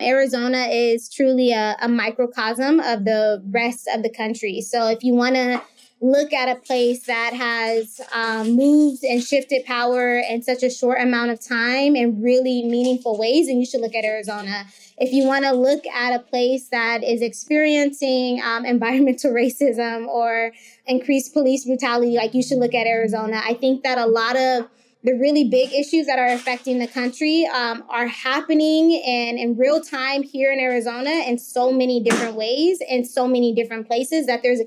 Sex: female